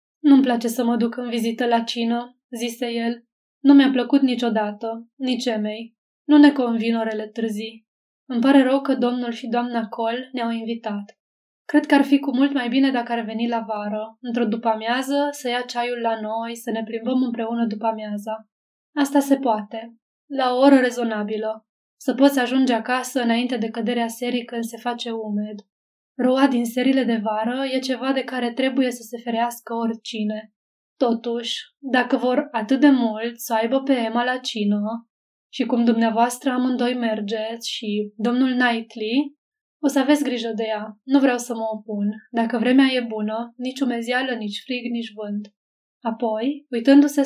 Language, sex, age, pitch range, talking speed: Romanian, female, 20-39, 225-255 Hz, 170 wpm